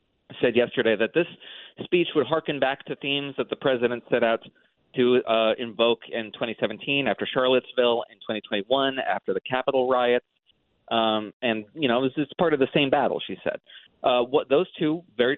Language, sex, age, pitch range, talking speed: English, male, 30-49, 120-170 Hz, 185 wpm